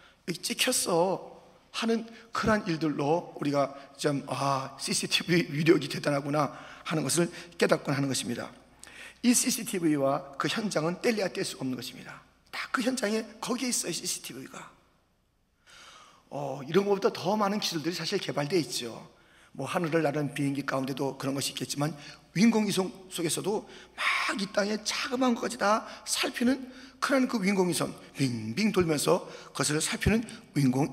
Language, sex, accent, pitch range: Korean, male, native, 140-220 Hz